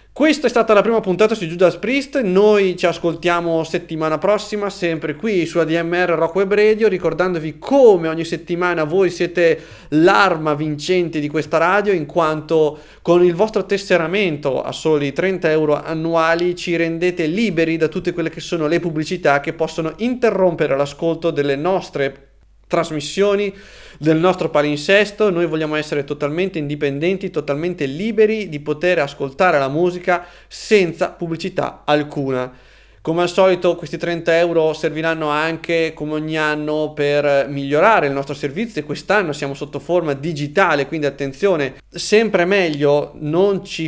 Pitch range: 155-185 Hz